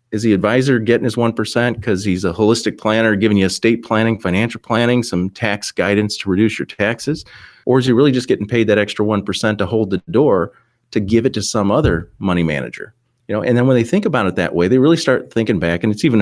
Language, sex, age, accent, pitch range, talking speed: English, male, 30-49, American, 90-115 Hz, 240 wpm